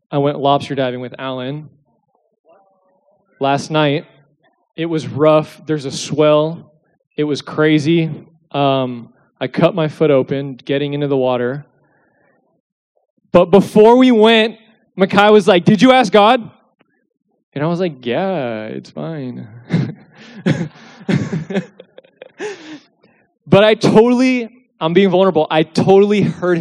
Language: English